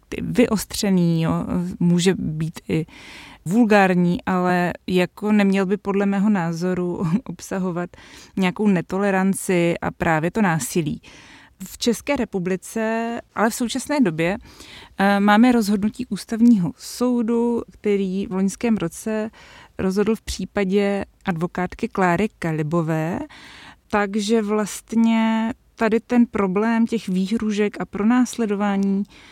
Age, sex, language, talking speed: 20-39, female, Czech, 100 wpm